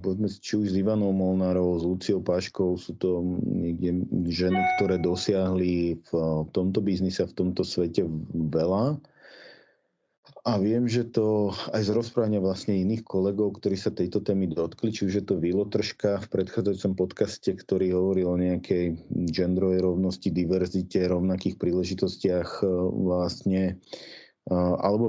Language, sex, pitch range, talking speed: Slovak, male, 90-105 Hz, 135 wpm